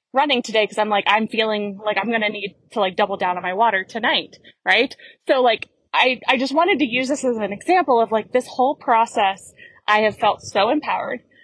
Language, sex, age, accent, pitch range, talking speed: English, female, 20-39, American, 220-275 Hz, 225 wpm